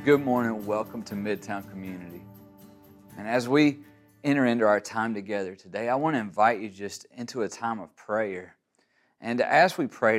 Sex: male